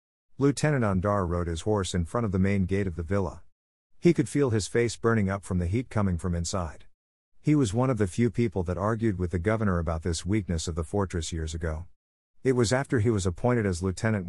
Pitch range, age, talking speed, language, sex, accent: 85-115 Hz, 50-69, 230 wpm, English, male, American